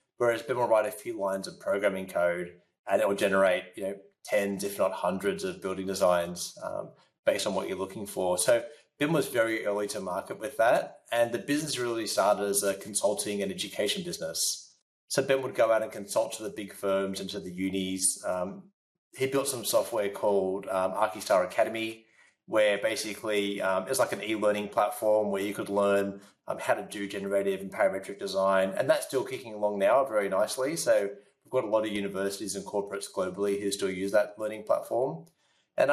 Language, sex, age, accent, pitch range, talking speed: English, male, 20-39, Australian, 95-130 Hz, 200 wpm